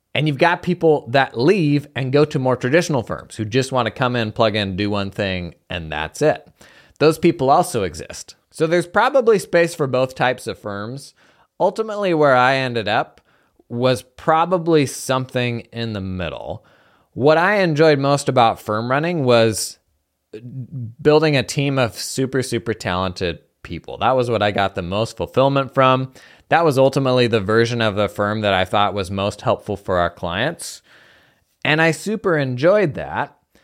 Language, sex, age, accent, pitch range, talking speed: English, male, 30-49, American, 105-145 Hz, 175 wpm